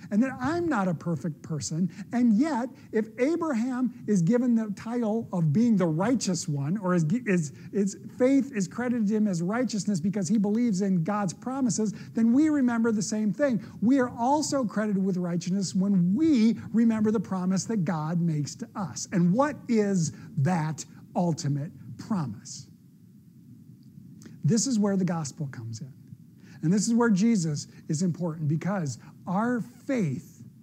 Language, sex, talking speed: English, male, 160 wpm